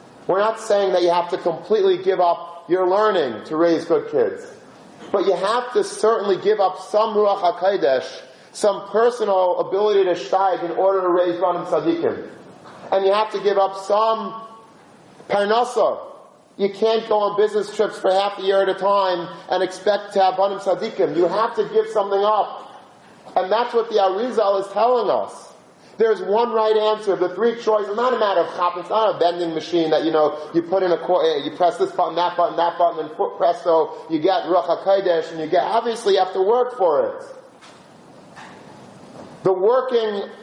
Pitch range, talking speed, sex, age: 180-225 Hz, 190 wpm, male, 30-49